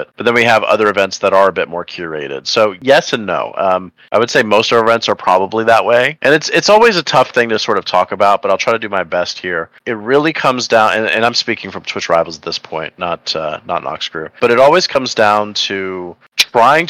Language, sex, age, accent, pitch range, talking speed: English, male, 30-49, American, 90-110 Hz, 260 wpm